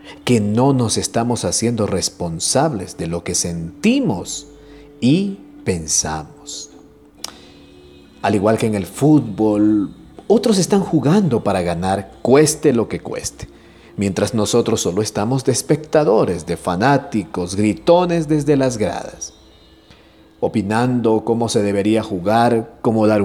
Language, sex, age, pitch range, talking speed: Spanish, male, 50-69, 100-145 Hz, 120 wpm